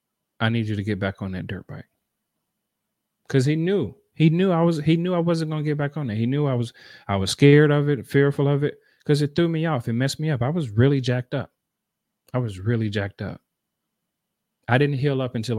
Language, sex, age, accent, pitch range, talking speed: English, male, 30-49, American, 105-130 Hz, 245 wpm